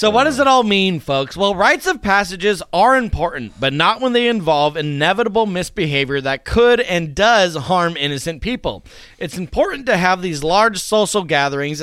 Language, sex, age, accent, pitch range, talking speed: English, male, 30-49, American, 160-210 Hz, 180 wpm